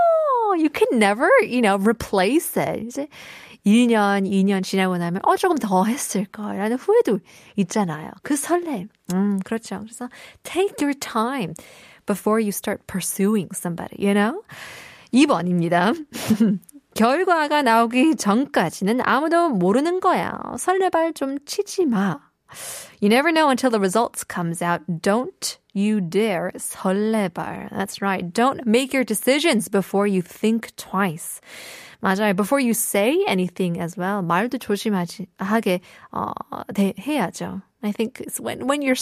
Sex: female